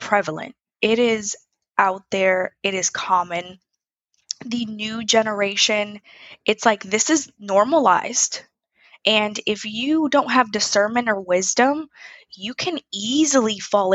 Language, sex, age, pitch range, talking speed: English, female, 10-29, 195-235 Hz, 120 wpm